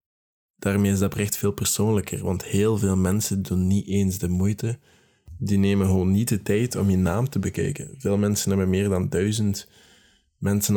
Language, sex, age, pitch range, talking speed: Dutch, male, 20-39, 95-110 Hz, 185 wpm